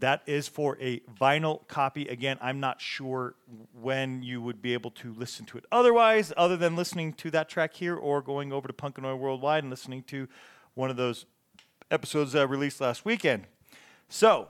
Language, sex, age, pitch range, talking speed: English, male, 40-59, 130-160 Hz, 190 wpm